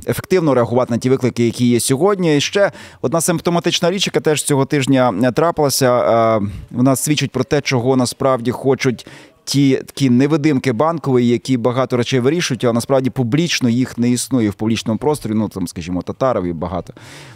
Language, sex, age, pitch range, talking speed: Ukrainian, male, 20-39, 115-145 Hz, 160 wpm